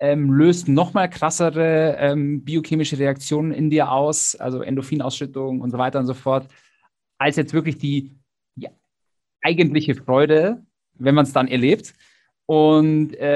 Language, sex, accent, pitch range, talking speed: German, male, German, 125-145 Hz, 140 wpm